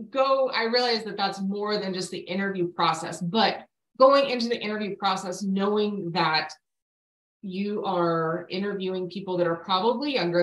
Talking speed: 155 wpm